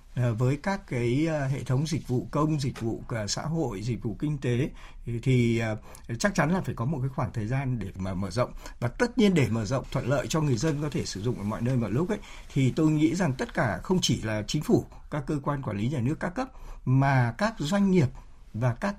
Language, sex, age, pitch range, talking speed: Vietnamese, male, 60-79, 125-180 Hz, 245 wpm